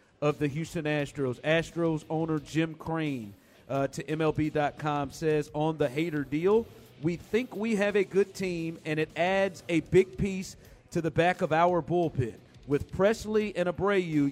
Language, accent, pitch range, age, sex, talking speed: English, American, 145-175 Hz, 40-59, male, 165 wpm